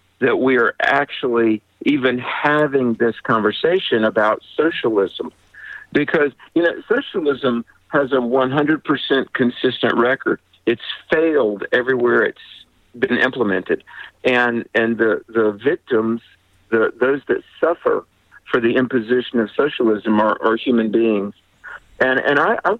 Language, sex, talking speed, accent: English, male, 125 wpm, American